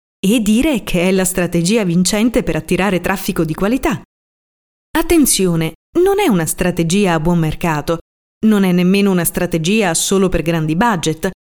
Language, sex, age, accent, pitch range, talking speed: Italian, female, 30-49, native, 175-260 Hz, 150 wpm